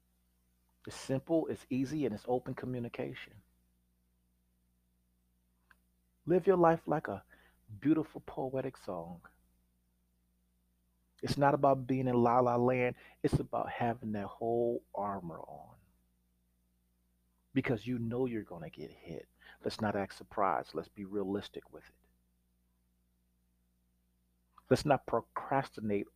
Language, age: English, 40-59